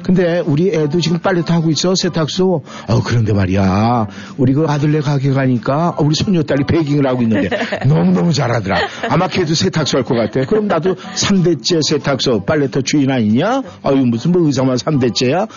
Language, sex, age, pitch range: Korean, male, 50-69, 125-170 Hz